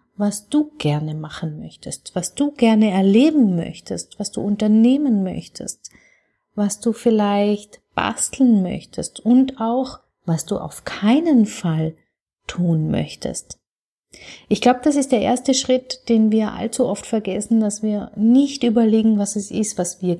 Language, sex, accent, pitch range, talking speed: German, female, German, 205-245 Hz, 145 wpm